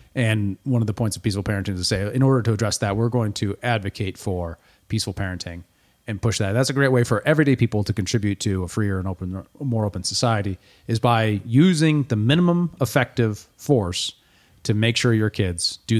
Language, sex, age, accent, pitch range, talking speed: English, male, 30-49, American, 100-125 Hz, 210 wpm